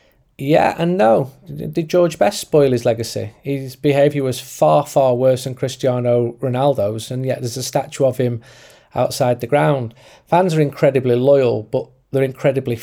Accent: British